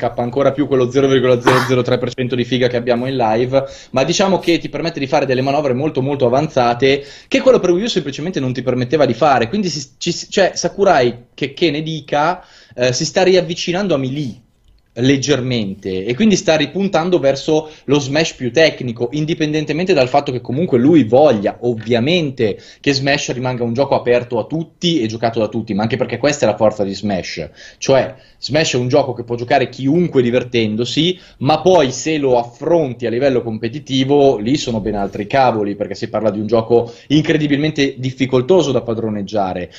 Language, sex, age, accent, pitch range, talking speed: Italian, male, 20-39, native, 120-155 Hz, 180 wpm